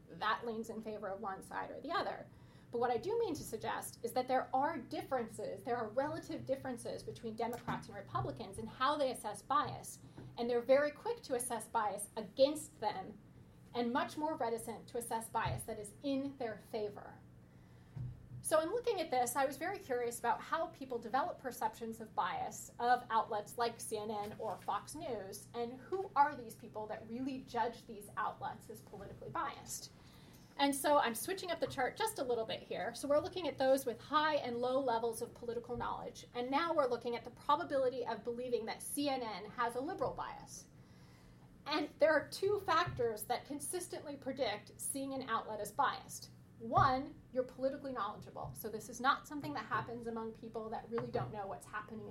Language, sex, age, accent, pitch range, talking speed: English, female, 30-49, American, 230-295 Hz, 190 wpm